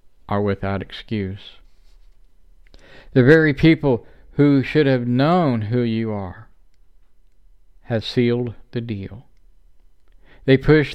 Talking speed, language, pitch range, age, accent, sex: 105 wpm, English, 95-125 Hz, 50-69, American, male